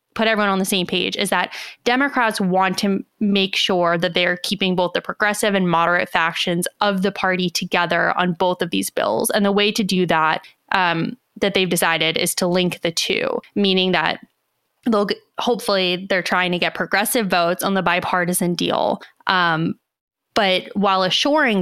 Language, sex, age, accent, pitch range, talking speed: English, female, 20-39, American, 175-200 Hz, 185 wpm